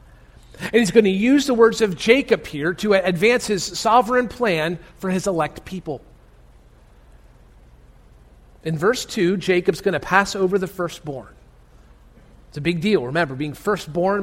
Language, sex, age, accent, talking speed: English, male, 40-59, American, 150 wpm